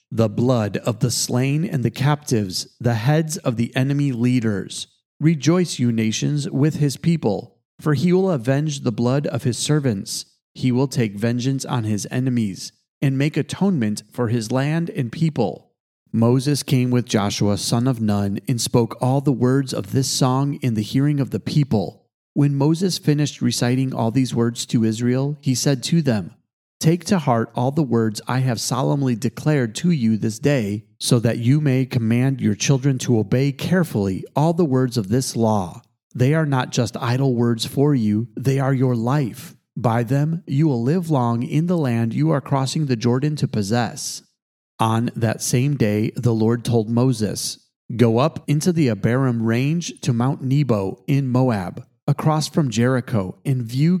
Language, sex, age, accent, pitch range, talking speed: English, male, 30-49, American, 115-145 Hz, 180 wpm